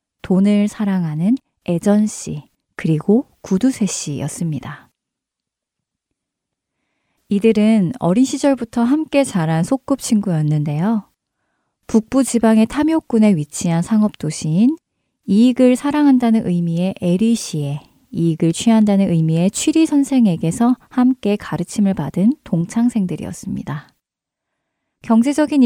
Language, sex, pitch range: Korean, female, 175-245 Hz